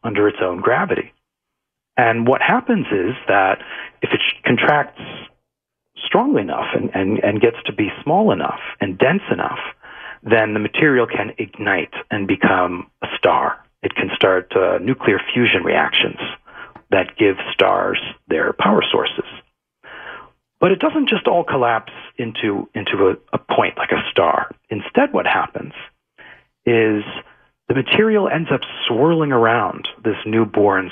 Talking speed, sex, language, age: 140 wpm, male, English, 40-59